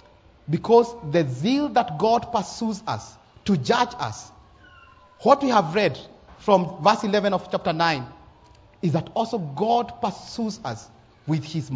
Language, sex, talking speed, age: English, male, 145 wpm, 40-59